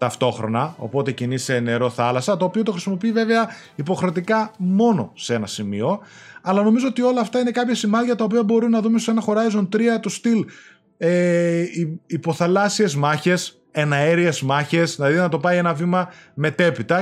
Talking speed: 160 wpm